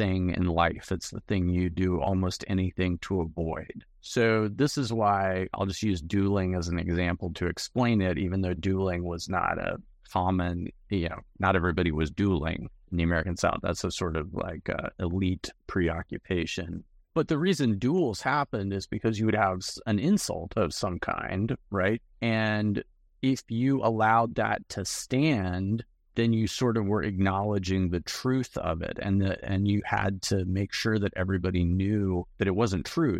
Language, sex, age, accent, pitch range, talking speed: English, male, 30-49, American, 90-105 Hz, 175 wpm